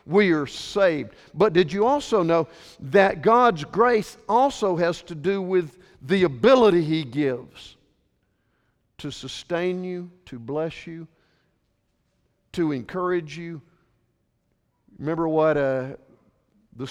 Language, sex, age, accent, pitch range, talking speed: English, male, 50-69, American, 140-185 Hz, 115 wpm